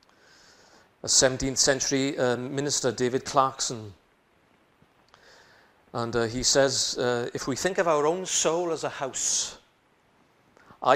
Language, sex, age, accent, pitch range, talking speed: English, male, 40-59, British, 120-145 Hz, 115 wpm